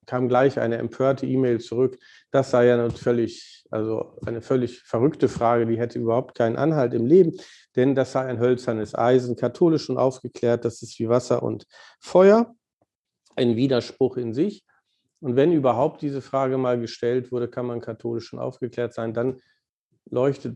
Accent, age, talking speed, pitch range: German, 50-69, 170 wpm, 120-140 Hz